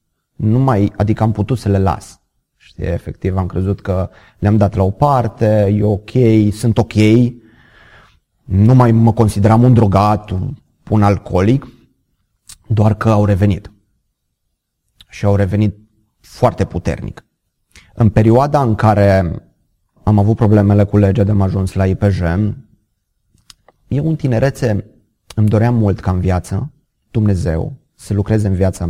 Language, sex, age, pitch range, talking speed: Romanian, male, 30-49, 95-120 Hz, 140 wpm